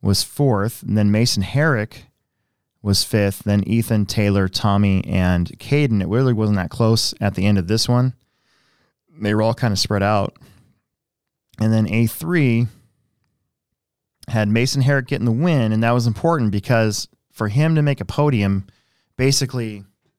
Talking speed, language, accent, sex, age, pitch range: 160 wpm, English, American, male, 20-39, 100-120 Hz